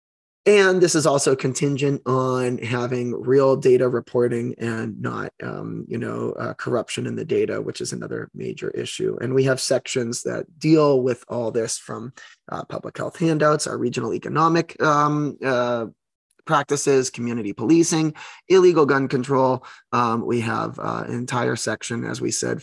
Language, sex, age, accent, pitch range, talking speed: English, male, 20-39, American, 115-135 Hz, 160 wpm